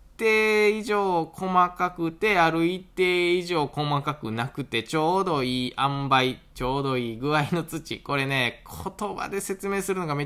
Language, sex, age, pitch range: Japanese, male, 20-39, 120-190 Hz